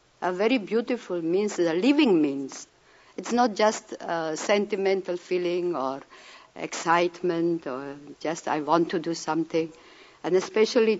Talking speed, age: 130 wpm, 60-79